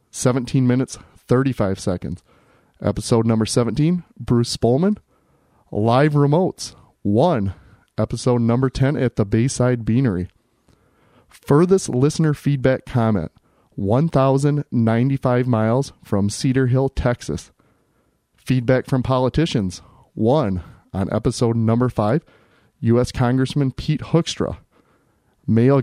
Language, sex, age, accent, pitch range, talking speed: English, male, 30-49, American, 105-130 Hz, 100 wpm